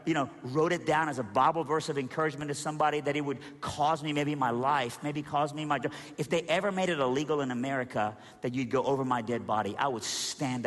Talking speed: 240 wpm